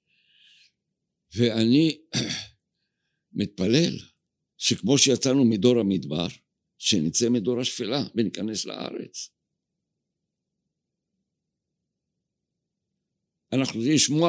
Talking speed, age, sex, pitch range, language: 55 wpm, 60-79, male, 120-180 Hz, Hebrew